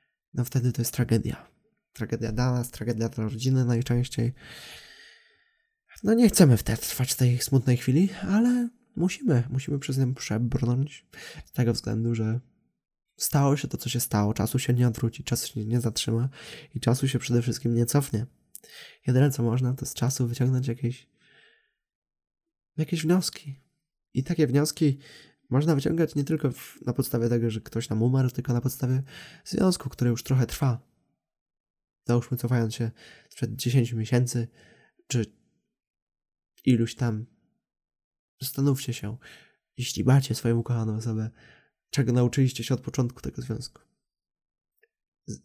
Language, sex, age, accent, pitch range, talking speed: Polish, male, 20-39, native, 120-145 Hz, 145 wpm